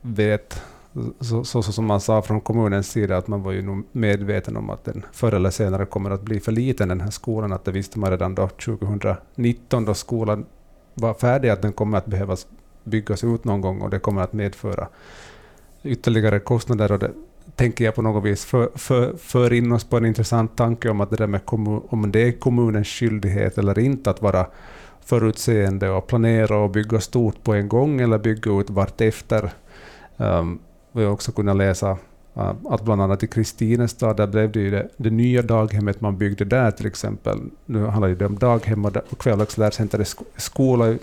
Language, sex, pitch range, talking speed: Swedish, male, 100-115 Hz, 185 wpm